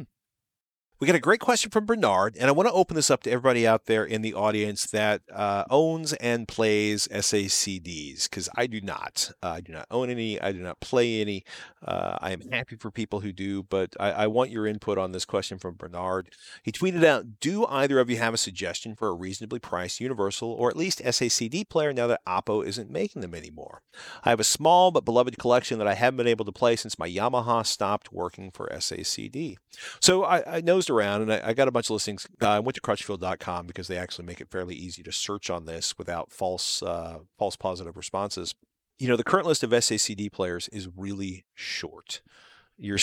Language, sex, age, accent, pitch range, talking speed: English, male, 40-59, American, 90-120 Hz, 215 wpm